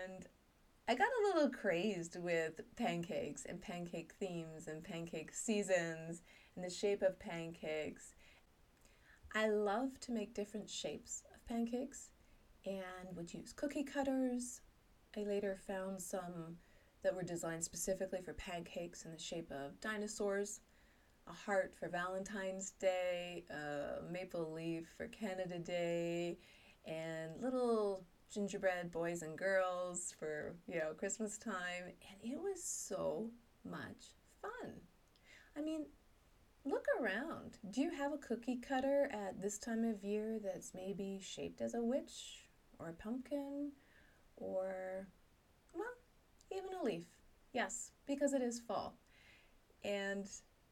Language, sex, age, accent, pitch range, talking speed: English, female, 30-49, American, 175-235 Hz, 130 wpm